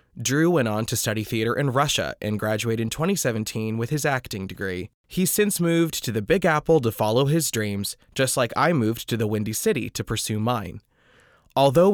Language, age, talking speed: English, 20-39, 195 wpm